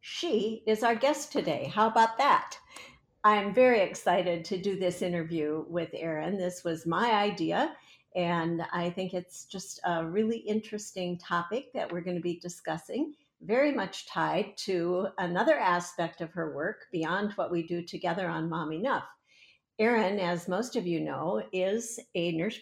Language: English